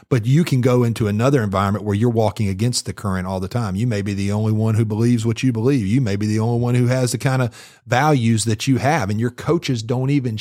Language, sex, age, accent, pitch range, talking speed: English, male, 40-59, American, 105-130 Hz, 270 wpm